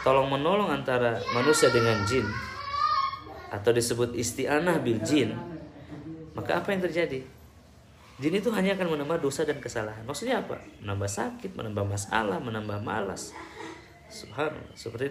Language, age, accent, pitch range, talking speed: Indonesian, 20-39, native, 110-145 Hz, 130 wpm